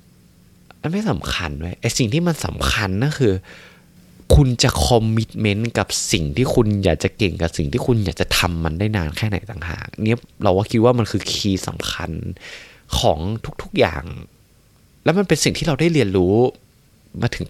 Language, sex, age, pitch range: Thai, male, 20-39, 90-130 Hz